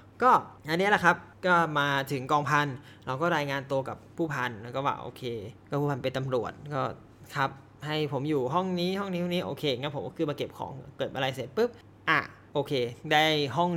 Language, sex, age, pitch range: Thai, male, 20-39, 130-160 Hz